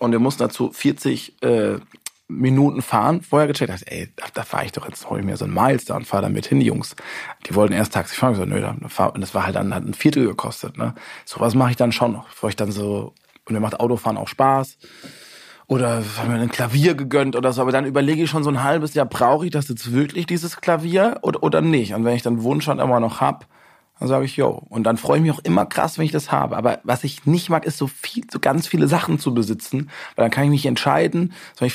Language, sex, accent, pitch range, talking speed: German, male, German, 115-155 Hz, 270 wpm